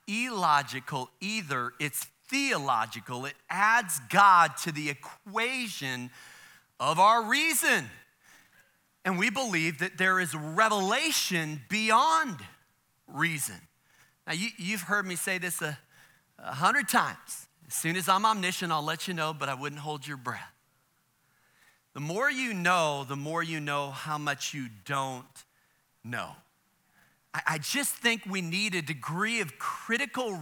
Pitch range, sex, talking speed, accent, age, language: 145-200 Hz, male, 135 wpm, American, 40-59, English